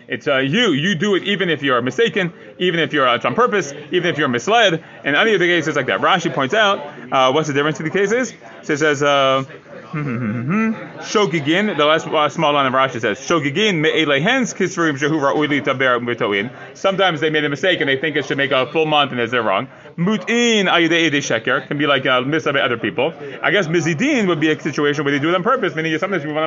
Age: 30-49